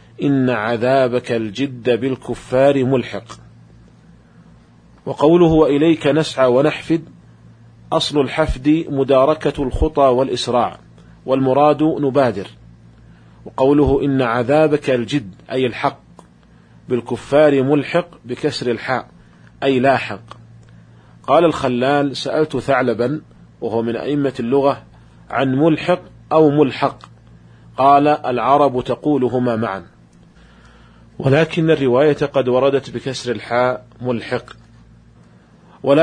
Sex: male